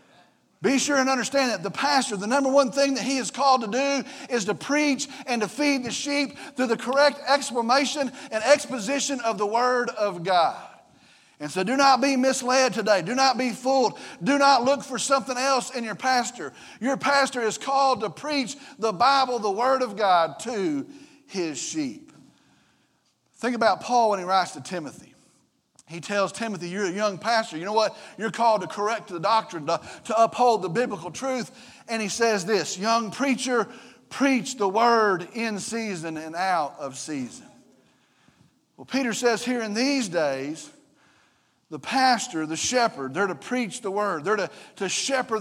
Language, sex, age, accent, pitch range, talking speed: English, male, 40-59, American, 205-270 Hz, 180 wpm